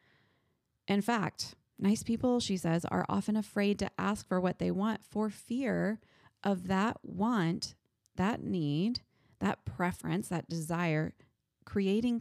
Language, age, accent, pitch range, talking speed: English, 30-49, American, 160-215 Hz, 135 wpm